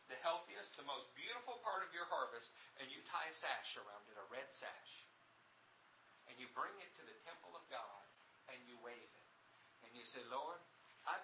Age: 50-69